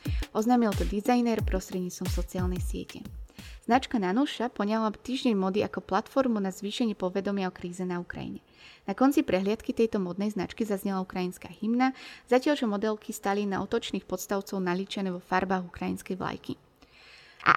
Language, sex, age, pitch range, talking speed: Slovak, female, 20-39, 190-245 Hz, 145 wpm